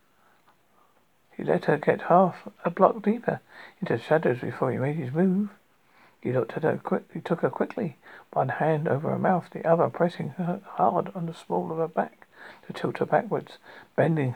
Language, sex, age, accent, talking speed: English, male, 60-79, British, 190 wpm